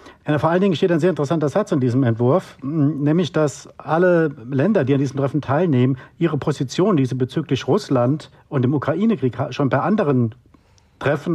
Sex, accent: male, German